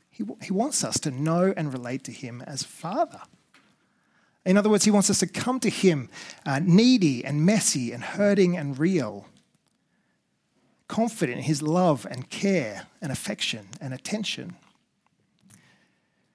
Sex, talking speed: male, 145 wpm